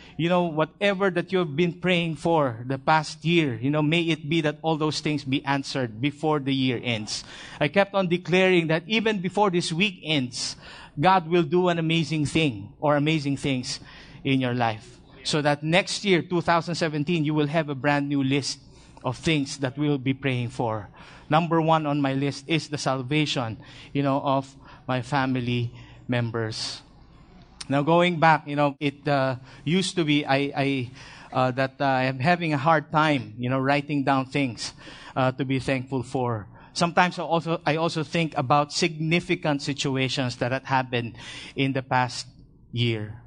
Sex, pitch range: male, 135-165 Hz